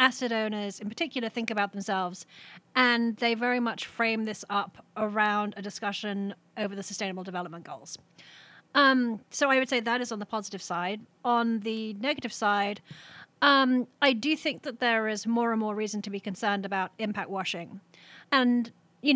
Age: 30-49